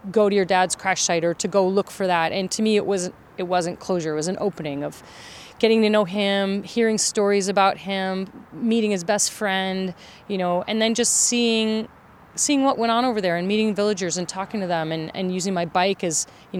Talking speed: 230 wpm